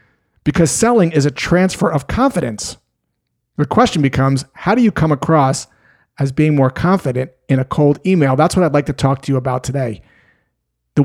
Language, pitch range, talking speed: English, 130-165 Hz, 185 wpm